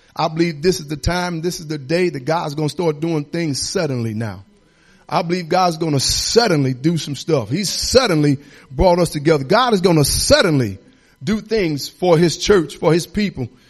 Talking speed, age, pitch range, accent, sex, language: 200 wpm, 40-59, 145-185 Hz, American, male, English